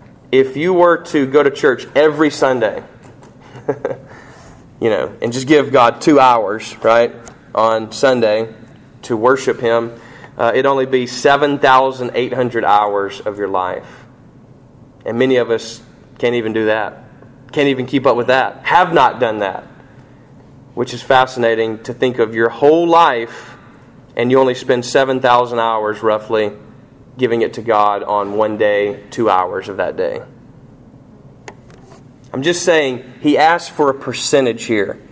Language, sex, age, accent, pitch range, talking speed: English, male, 30-49, American, 120-180 Hz, 150 wpm